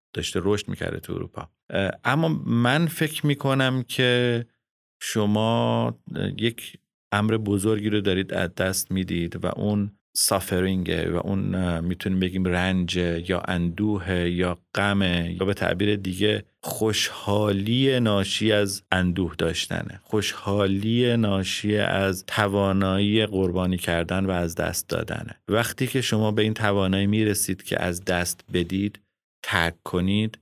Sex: male